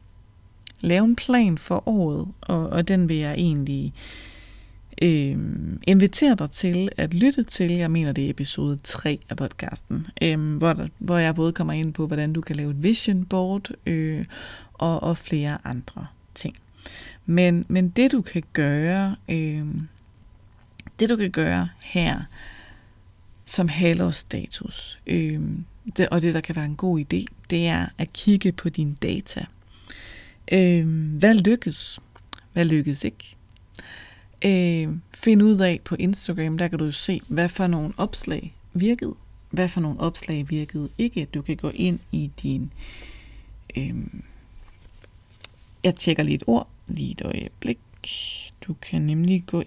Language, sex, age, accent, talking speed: Danish, female, 30-49, native, 150 wpm